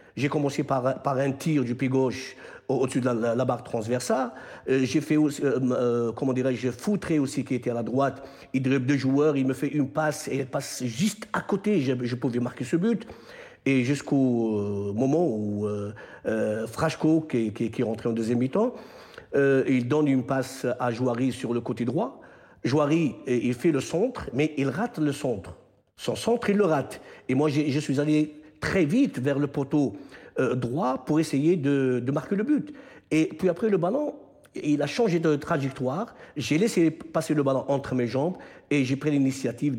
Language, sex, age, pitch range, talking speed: French, male, 50-69, 130-160 Hz, 205 wpm